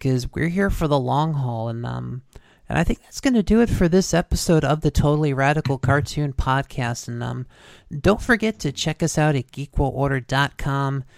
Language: English